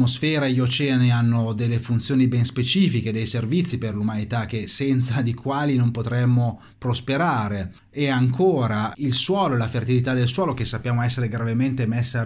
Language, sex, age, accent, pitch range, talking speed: Italian, male, 30-49, native, 110-135 Hz, 155 wpm